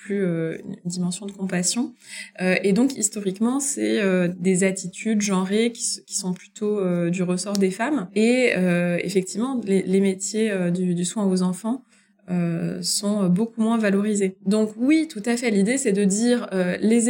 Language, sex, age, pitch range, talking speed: French, female, 20-39, 180-215 Hz, 140 wpm